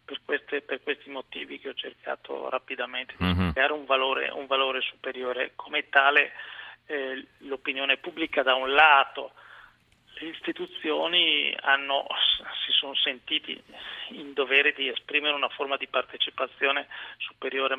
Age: 40-59